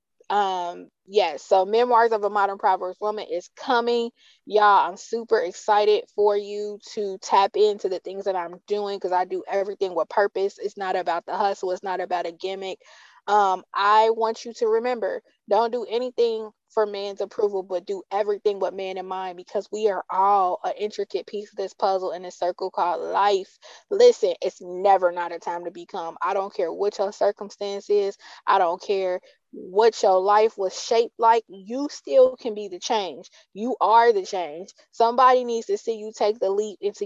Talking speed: 190 wpm